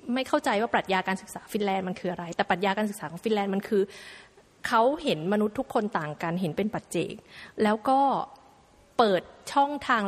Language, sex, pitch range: Thai, female, 200-255 Hz